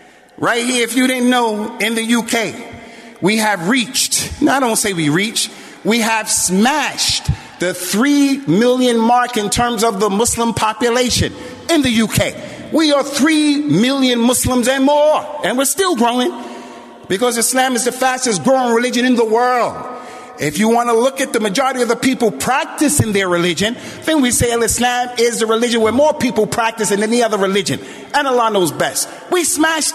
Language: English